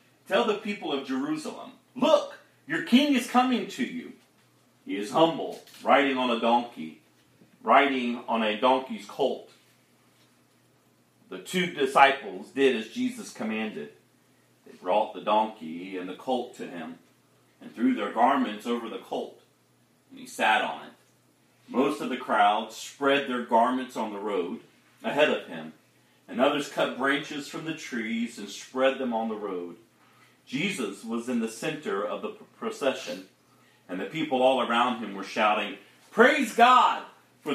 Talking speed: 155 wpm